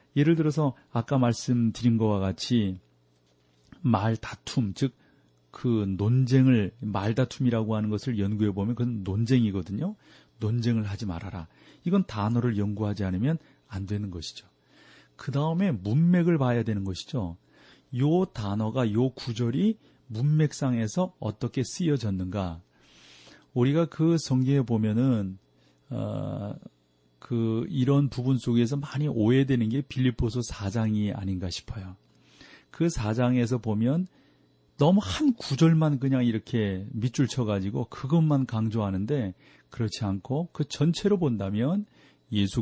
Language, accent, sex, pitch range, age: Korean, native, male, 105-135 Hz, 40-59